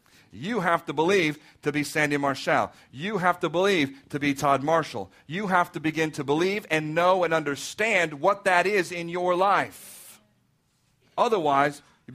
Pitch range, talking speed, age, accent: 135-190 Hz, 170 wpm, 40-59, American